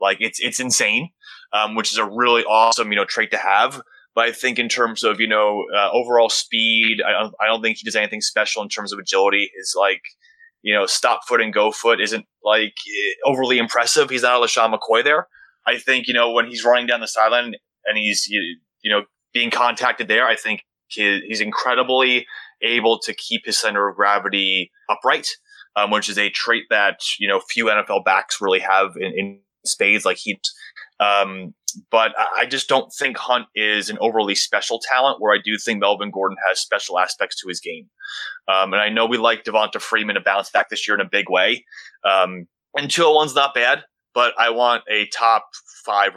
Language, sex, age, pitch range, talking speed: English, male, 20-39, 105-130 Hz, 205 wpm